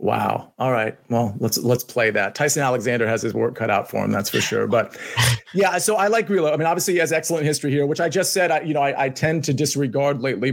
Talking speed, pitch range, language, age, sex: 270 wpm, 135-170 Hz, English, 30-49, male